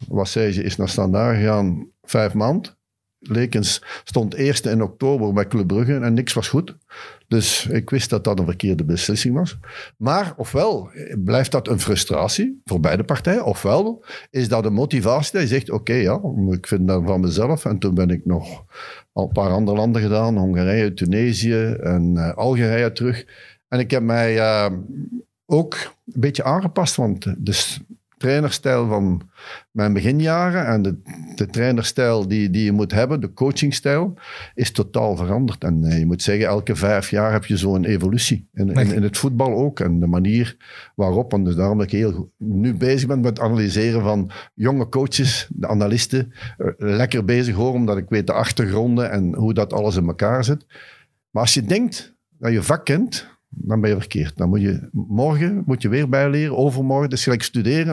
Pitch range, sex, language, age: 100-130 Hz, male, Dutch, 50-69